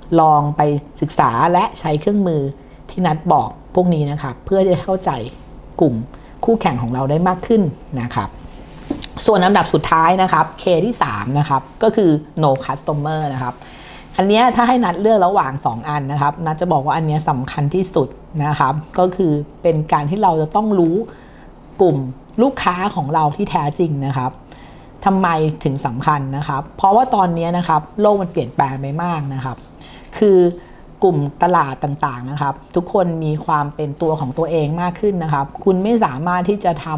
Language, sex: Thai, female